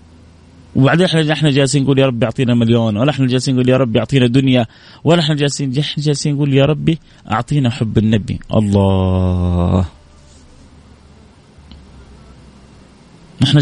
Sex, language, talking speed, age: male, Arabic, 115 wpm, 30-49